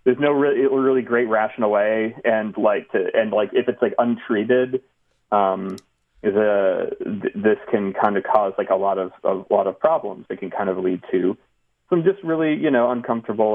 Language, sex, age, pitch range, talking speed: English, male, 30-49, 95-120 Hz, 190 wpm